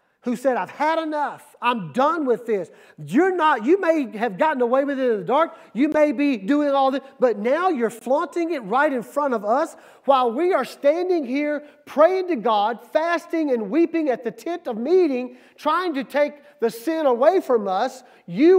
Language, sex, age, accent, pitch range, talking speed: English, male, 40-59, American, 225-290 Hz, 200 wpm